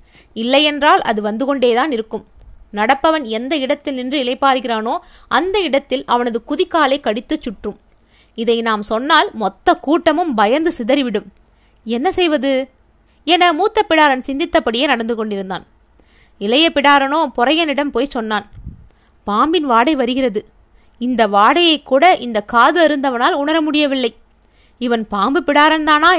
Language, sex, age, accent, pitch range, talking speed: Tamil, female, 20-39, native, 235-325 Hz, 115 wpm